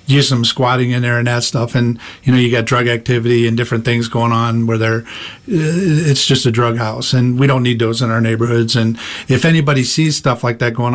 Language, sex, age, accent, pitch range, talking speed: English, male, 50-69, American, 120-135 Hz, 235 wpm